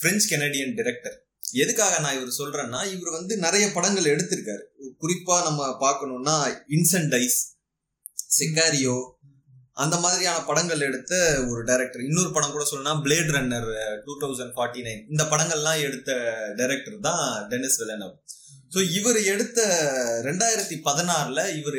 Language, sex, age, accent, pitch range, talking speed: Tamil, male, 30-49, native, 140-195 Hz, 125 wpm